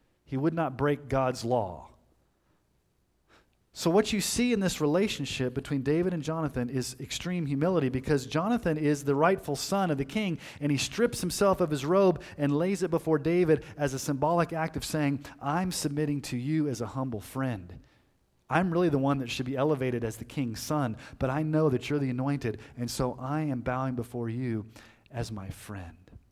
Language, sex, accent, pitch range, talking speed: English, male, American, 115-155 Hz, 190 wpm